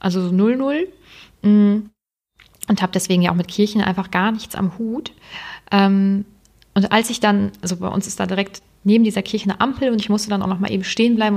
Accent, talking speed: German, 215 wpm